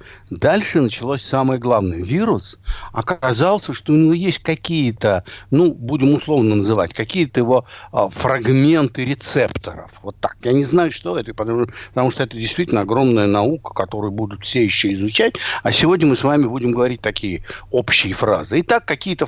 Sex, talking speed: male, 155 wpm